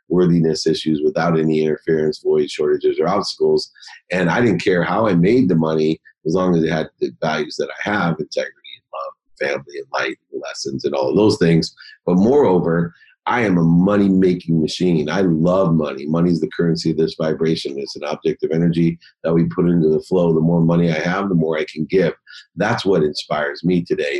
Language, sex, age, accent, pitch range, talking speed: English, male, 40-59, American, 80-105 Hz, 210 wpm